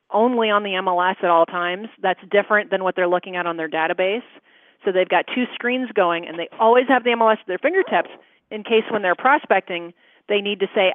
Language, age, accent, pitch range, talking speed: English, 40-59, American, 180-220 Hz, 225 wpm